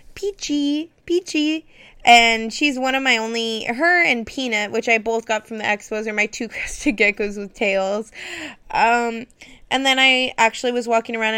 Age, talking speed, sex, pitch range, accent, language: 20-39, 175 wpm, female, 210-245 Hz, American, English